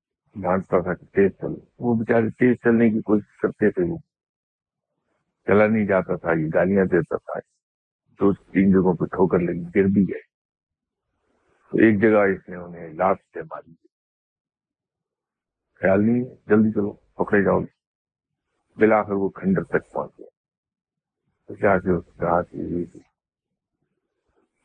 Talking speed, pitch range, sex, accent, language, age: 45 wpm, 90-110 Hz, male, Indian, English, 50-69